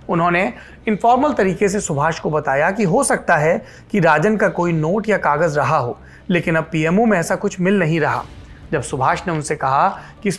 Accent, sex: native, male